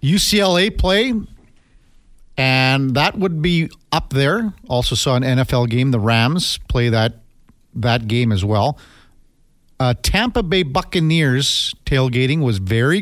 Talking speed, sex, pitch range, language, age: 130 wpm, male, 110-150 Hz, English, 40-59